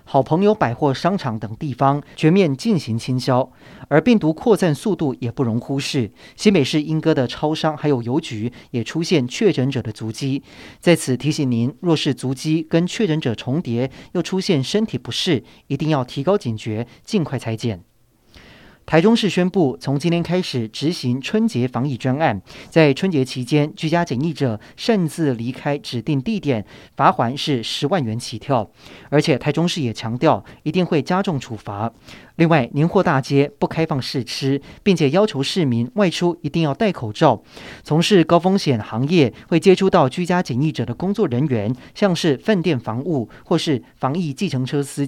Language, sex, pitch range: Chinese, male, 125-170 Hz